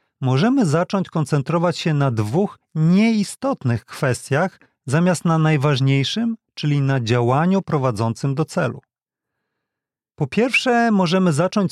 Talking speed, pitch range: 110 wpm, 140-185 Hz